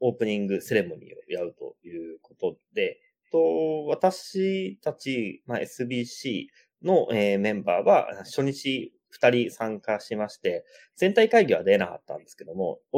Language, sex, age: Japanese, male, 30-49